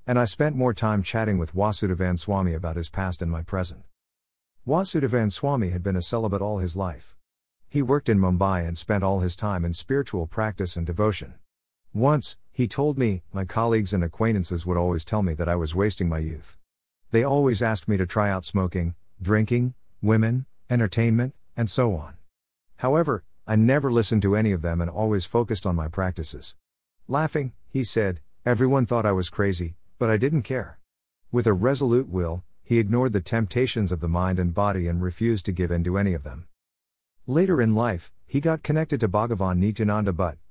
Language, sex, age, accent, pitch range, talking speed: English, male, 50-69, American, 85-115 Hz, 190 wpm